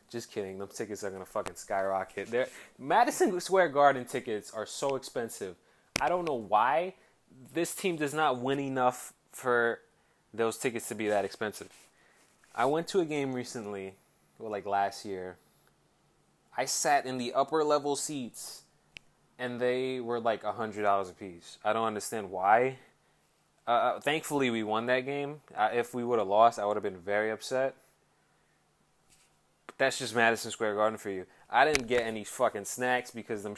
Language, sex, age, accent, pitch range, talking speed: English, male, 20-39, American, 105-135 Hz, 165 wpm